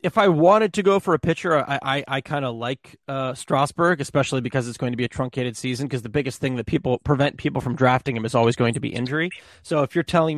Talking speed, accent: 265 wpm, American